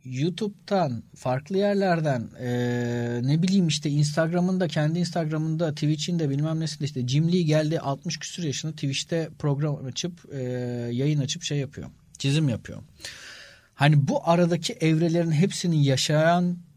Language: Turkish